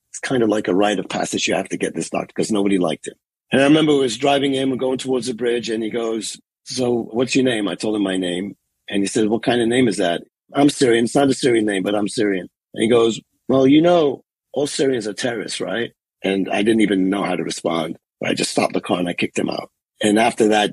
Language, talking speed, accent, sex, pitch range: English, 270 wpm, American, male, 100-130 Hz